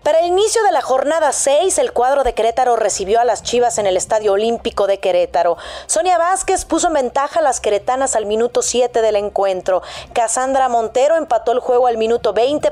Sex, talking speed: female, 200 wpm